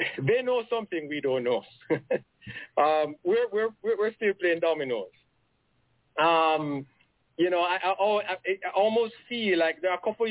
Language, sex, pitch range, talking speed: English, male, 140-210 Hz, 150 wpm